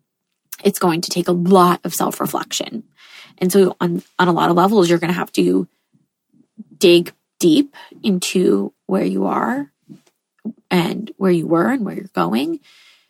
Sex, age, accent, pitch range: female, 20-39, American, 180-220 Hz